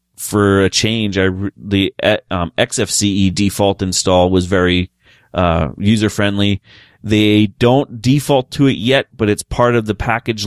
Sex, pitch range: male, 90-105 Hz